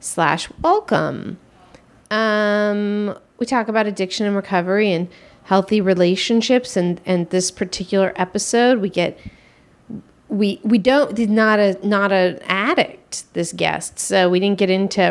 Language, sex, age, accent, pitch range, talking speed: English, female, 40-59, American, 185-230 Hz, 140 wpm